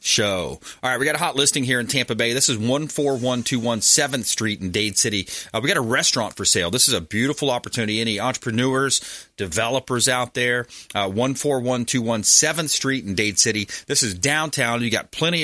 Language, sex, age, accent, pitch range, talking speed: English, male, 30-49, American, 105-130 Hz, 190 wpm